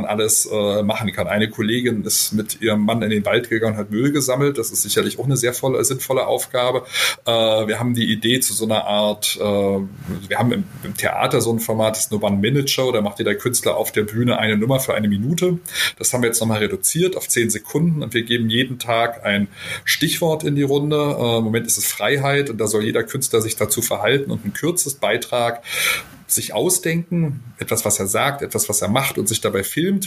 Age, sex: 30-49, male